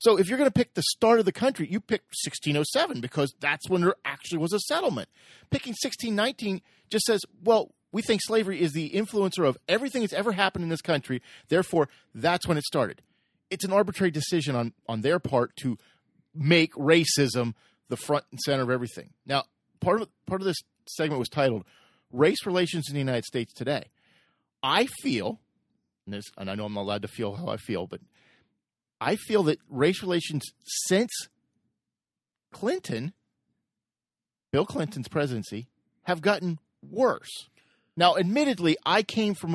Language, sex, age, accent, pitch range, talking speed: English, male, 40-59, American, 120-185 Hz, 175 wpm